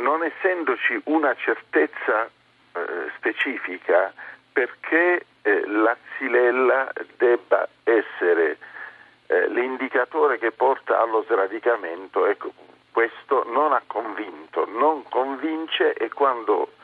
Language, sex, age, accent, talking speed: Italian, male, 50-69, native, 95 wpm